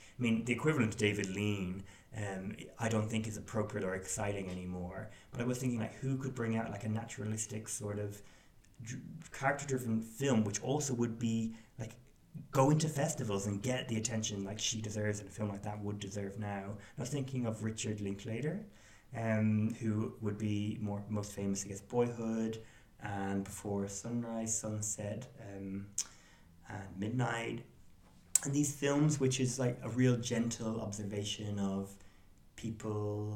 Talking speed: 160 wpm